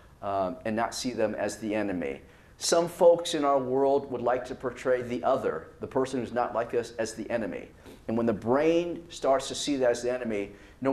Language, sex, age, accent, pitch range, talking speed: English, male, 40-59, American, 110-150 Hz, 220 wpm